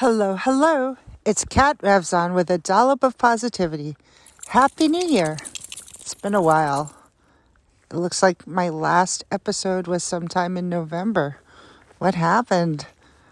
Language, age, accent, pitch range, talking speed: English, 50-69, American, 145-220 Hz, 130 wpm